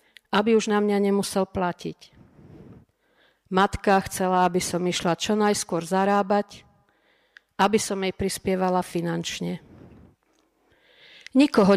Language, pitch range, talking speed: Slovak, 180-210 Hz, 100 wpm